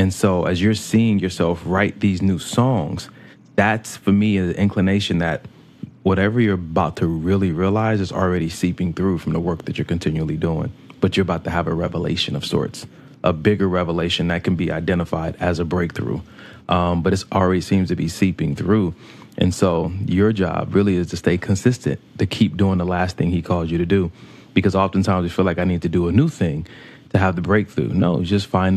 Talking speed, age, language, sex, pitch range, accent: 210 wpm, 30-49, English, male, 90-100 Hz, American